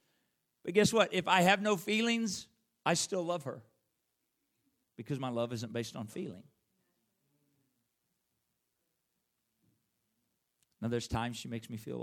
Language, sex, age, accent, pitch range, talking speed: English, male, 50-69, American, 110-140 Hz, 130 wpm